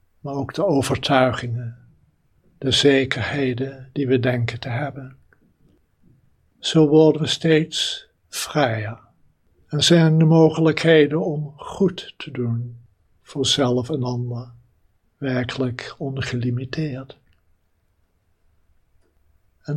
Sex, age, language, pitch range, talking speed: male, 60-79, Dutch, 115-150 Hz, 95 wpm